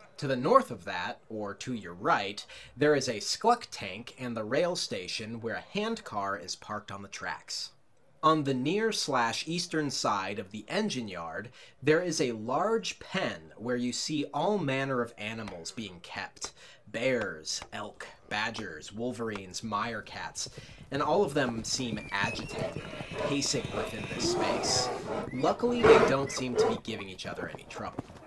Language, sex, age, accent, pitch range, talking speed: English, male, 30-49, American, 115-160 Hz, 155 wpm